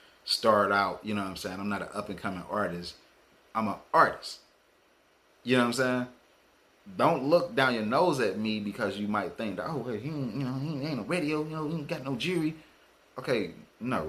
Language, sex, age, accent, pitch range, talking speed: English, male, 30-49, American, 95-145 Hz, 205 wpm